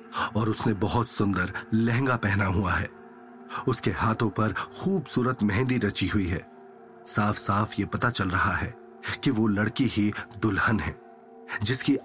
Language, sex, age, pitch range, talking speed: Hindi, male, 40-59, 105-155 Hz, 150 wpm